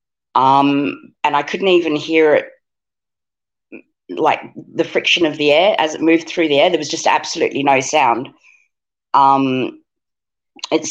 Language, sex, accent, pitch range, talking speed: English, female, Australian, 145-180 Hz, 150 wpm